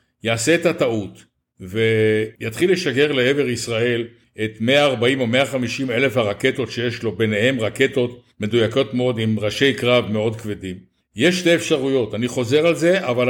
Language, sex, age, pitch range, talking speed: Hebrew, male, 60-79, 115-145 Hz, 145 wpm